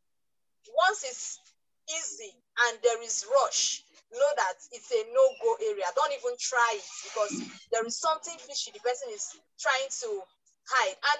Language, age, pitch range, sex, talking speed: English, 20-39, 245-325 Hz, female, 155 wpm